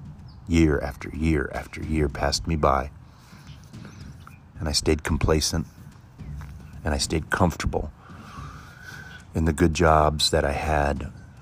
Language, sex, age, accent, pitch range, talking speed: English, male, 30-49, American, 75-85 Hz, 120 wpm